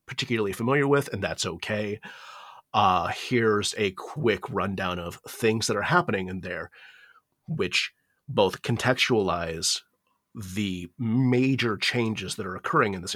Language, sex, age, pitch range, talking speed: English, male, 30-49, 95-115 Hz, 130 wpm